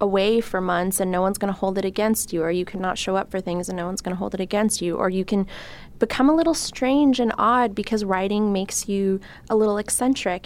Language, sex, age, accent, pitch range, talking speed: English, female, 20-39, American, 185-220 Hz, 240 wpm